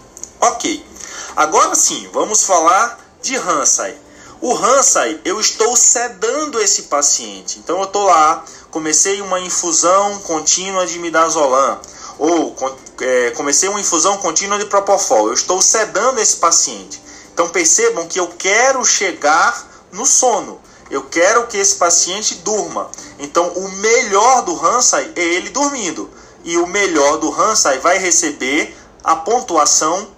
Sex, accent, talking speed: male, Brazilian, 135 wpm